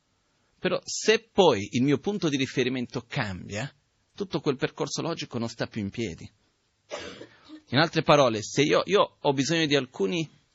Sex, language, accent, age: male, Italian, native, 30-49